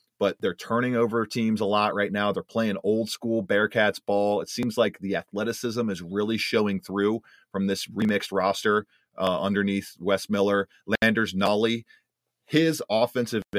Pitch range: 95-110 Hz